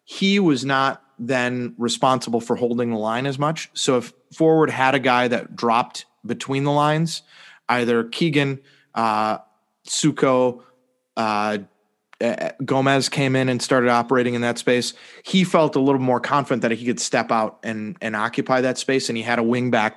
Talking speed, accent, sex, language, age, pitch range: 170 wpm, American, male, English, 30-49, 115-135 Hz